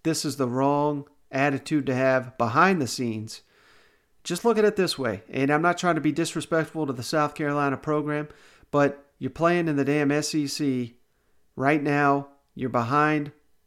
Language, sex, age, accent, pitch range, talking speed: English, male, 40-59, American, 135-160 Hz, 170 wpm